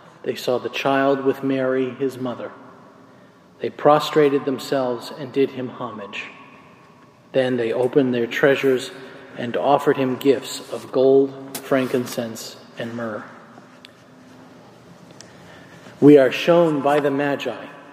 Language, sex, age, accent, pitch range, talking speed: English, male, 40-59, American, 130-150 Hz, 115 wpm